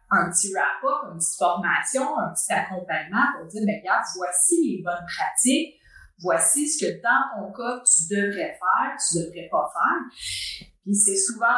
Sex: female